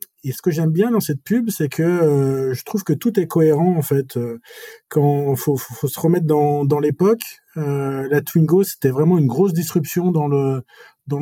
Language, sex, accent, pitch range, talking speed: French, male, French, 135-175 Hz, 220 wpm